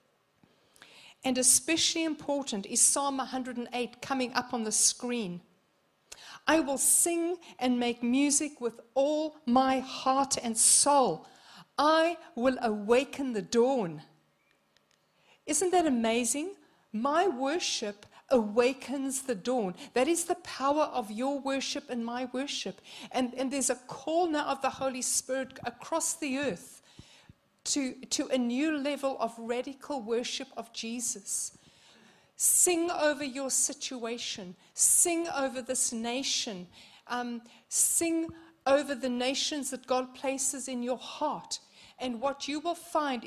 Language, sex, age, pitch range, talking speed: English, female, 60-79, 240-285 Hz, 130 wpm